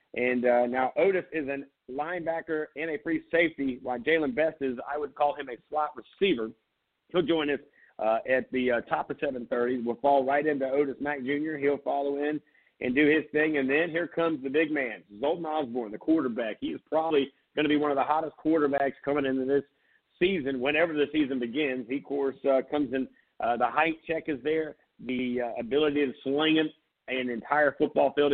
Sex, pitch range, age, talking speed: male, 130-155 Hz, 40-59, 210 wpm